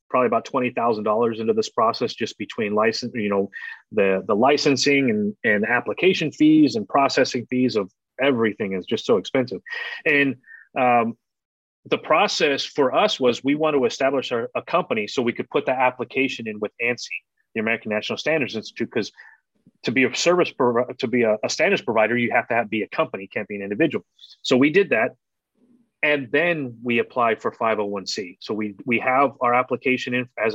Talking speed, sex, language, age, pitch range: 195 wpm, male, English, 30-49, 115-150 Hz